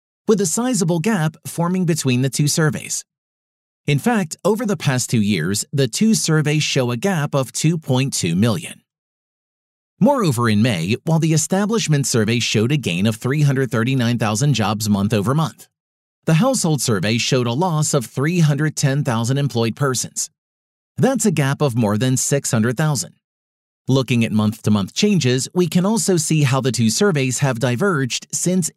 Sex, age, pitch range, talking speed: male, 40-59, 120-165 Hz, 150 wpm